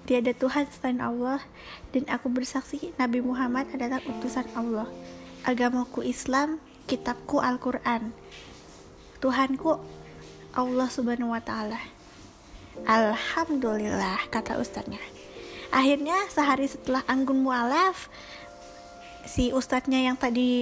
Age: 20-39